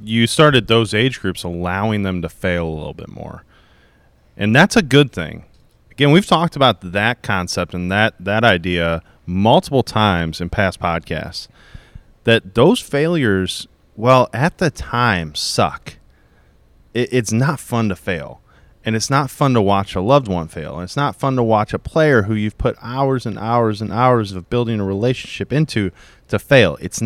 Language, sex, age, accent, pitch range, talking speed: English, male, 30-49, American, 95-125 Hz, 175 wpm